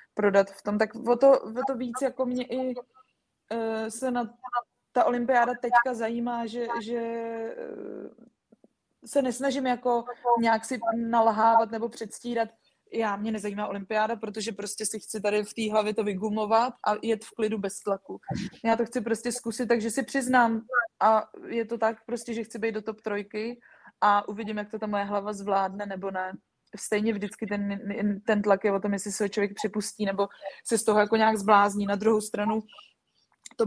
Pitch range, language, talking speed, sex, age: 205-235 Hz, Czech, 180 wpm, female, 20-39